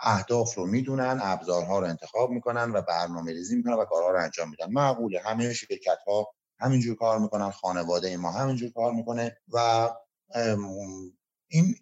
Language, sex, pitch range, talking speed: Persian, male, 95-140 Hz, 155 wpm